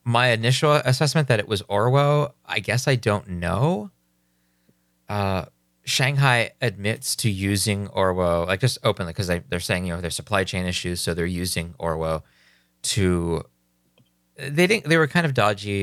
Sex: male